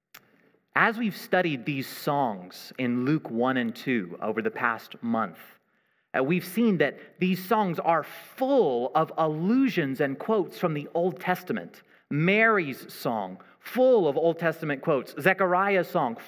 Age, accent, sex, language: 30-49, American, male, English